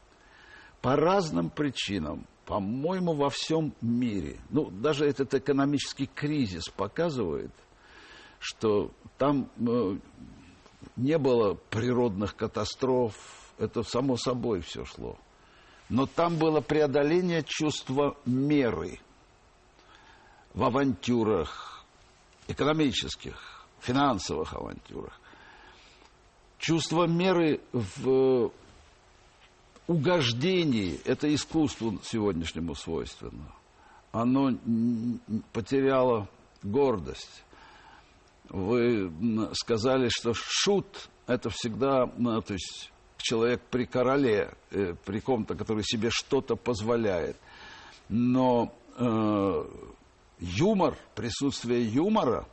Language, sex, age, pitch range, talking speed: Russian, male, 60-79, 115-145 Hz, 80 wpm